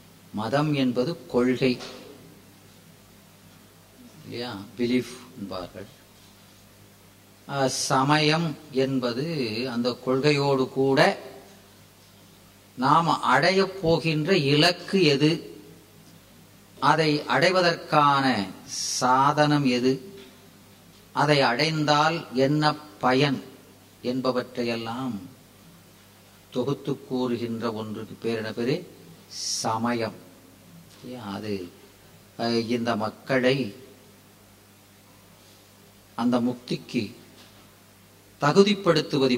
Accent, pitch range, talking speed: native, 100-150 Hz, 50 wpm